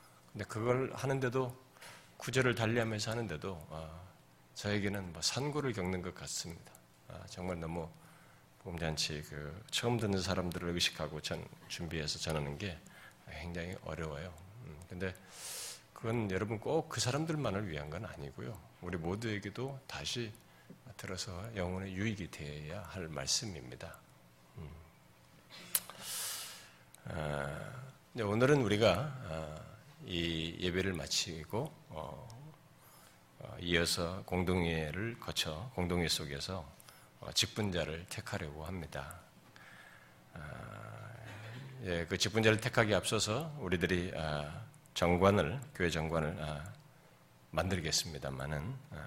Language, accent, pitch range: Korean, native, 80-115 Hz